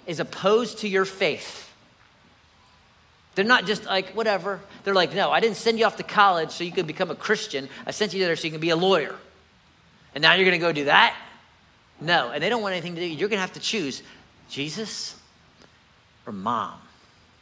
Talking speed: 210 wpm